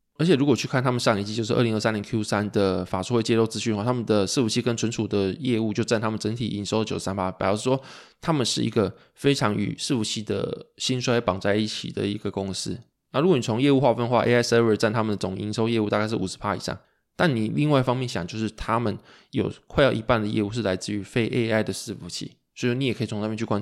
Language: Chinese